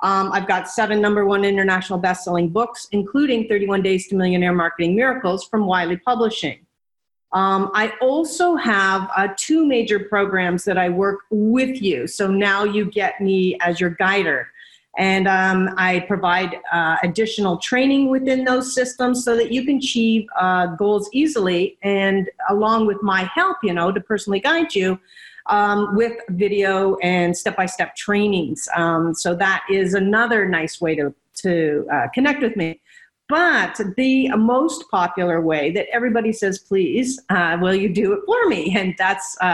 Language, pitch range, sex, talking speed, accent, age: English, 185-230 Hz, female, 160 wpm, American, 40-59